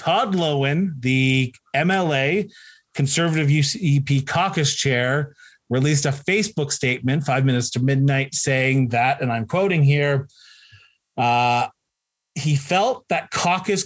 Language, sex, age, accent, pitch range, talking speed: English, male, 30-49, American, 130-170 Hz, 115 wpm